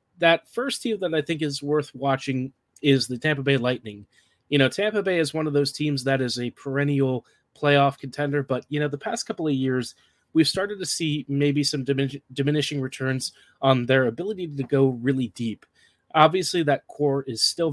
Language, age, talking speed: English, 30-49, 195 wpm